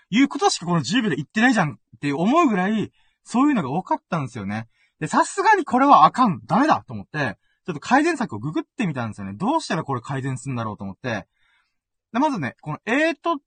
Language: Japanese